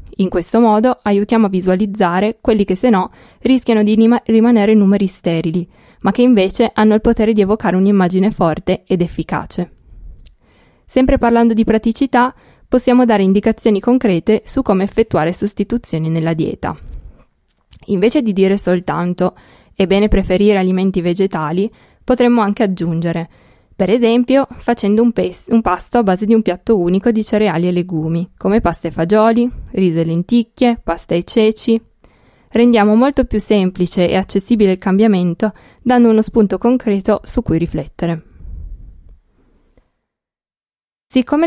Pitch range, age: 175-225 Hz, 20-39